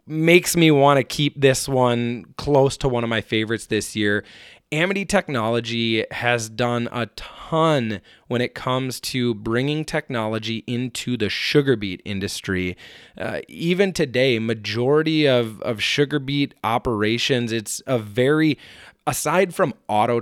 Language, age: English, 20-39